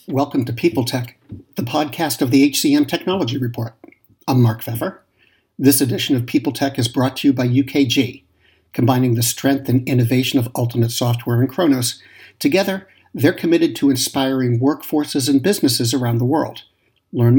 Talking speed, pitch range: 155 wpm, 120-140 Hz